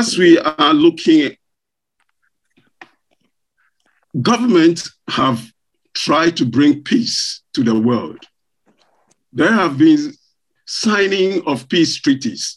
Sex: male